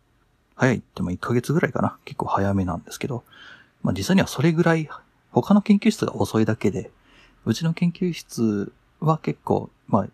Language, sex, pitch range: Japanese, male, 100-155 Hz